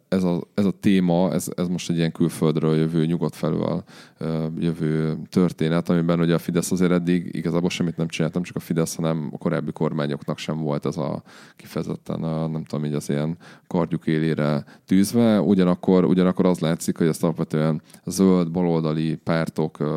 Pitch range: 80-90 Hz